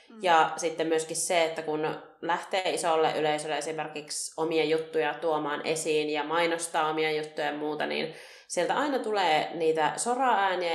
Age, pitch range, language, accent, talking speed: 30-49, 155-175 Hz, Finnish, native, 145 wpm